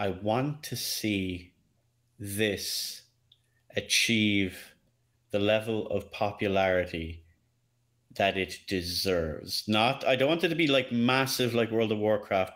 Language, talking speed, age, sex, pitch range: English, 125 wpm, 30-49, male, 95-115 Hz